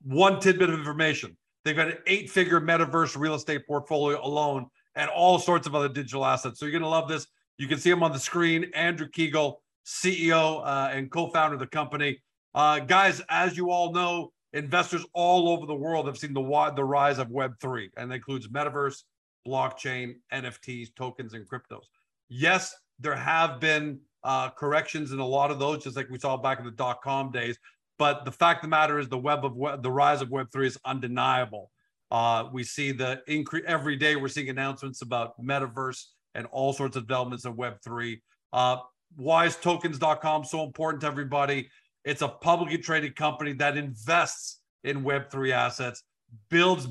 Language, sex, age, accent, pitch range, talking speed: English, male, 50-69, American, 130-160 Hz, 185 wpm